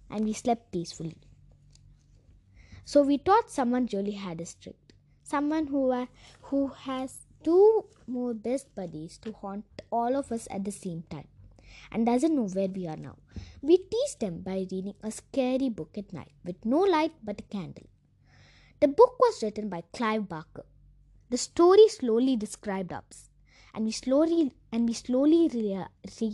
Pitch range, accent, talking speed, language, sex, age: 210-315 Hz, native, 160 wpm, Tamil, female, 20-39